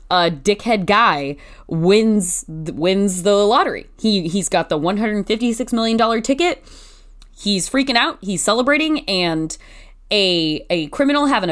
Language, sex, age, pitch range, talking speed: English, female, 20-39, 165-220 Hz, 145 wpm